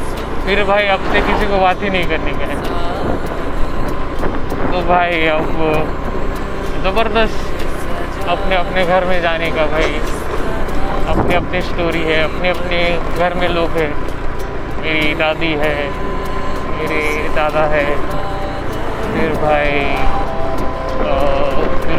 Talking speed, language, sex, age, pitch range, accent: 70 wpm, Marathi, male, 30-49, 160-190 Hz, native